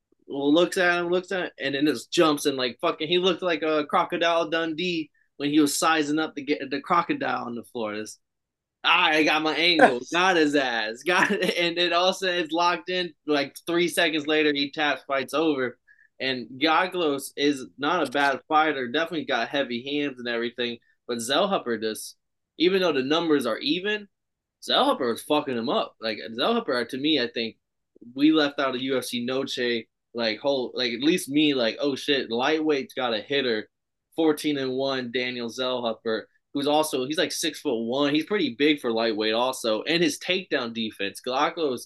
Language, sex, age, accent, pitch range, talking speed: English, male, 20-39, American, 125-160 Hz, 190 wpm